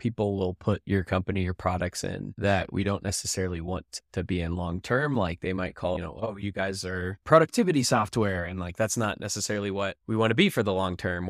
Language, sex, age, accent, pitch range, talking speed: English, male, 10-29, American, 95-110 Hz, 225 wpm